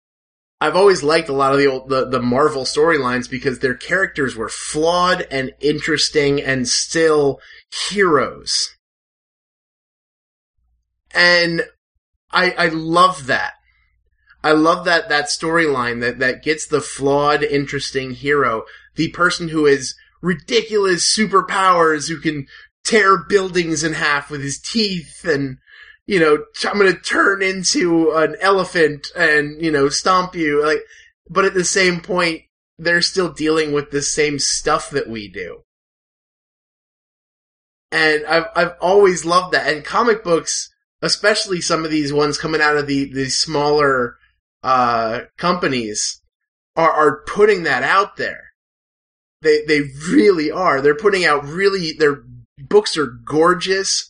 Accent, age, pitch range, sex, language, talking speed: American, 20-39, 145-185 Hz, male, English, 140 wpm